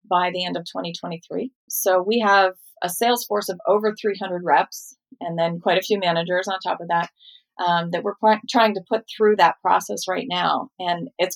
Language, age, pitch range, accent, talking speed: English, 30-49, 175-210 Hz, American, 200 wpm